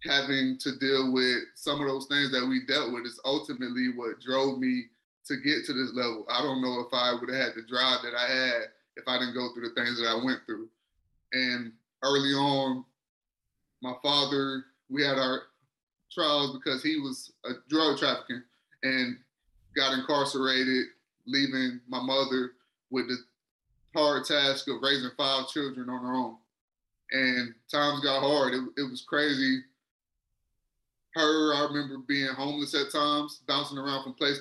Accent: American